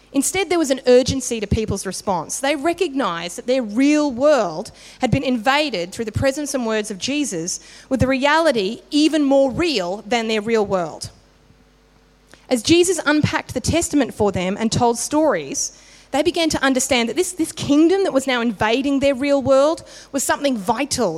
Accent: Australian